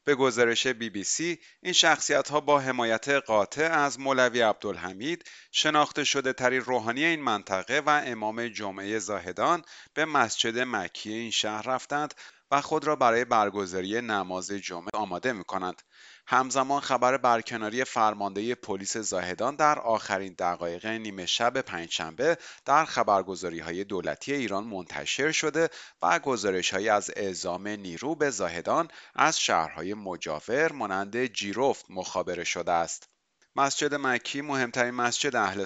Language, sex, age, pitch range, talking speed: Persian, male, 30-49, 100-135 Hz, 130 wpm